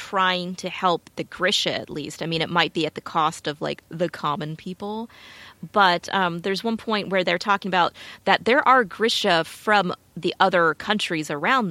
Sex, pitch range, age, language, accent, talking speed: female, 160-205 Hz, 30-49, English, American, 195 wpm